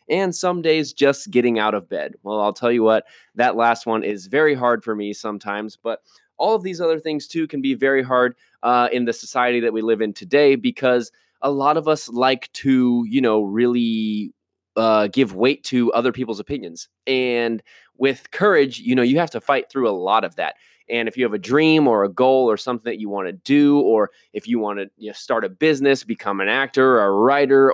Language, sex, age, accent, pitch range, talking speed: English, male, 20-39, American, 110-135 Hz, 225 wpm